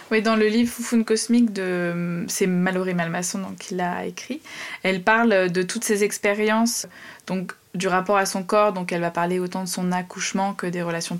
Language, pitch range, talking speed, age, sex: French, 180-220 Hz, 200 wpm, 20-39, female